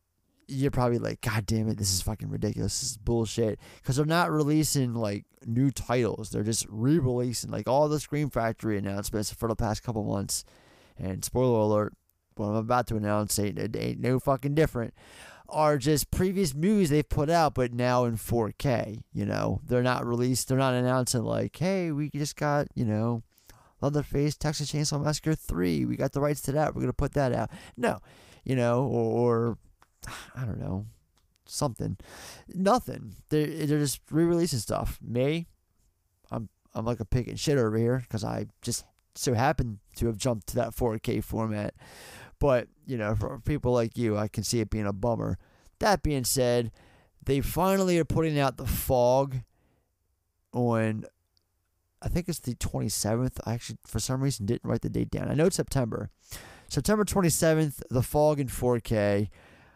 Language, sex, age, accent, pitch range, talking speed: English, male, 30-49, American, 105-140 Hz, 180 wpm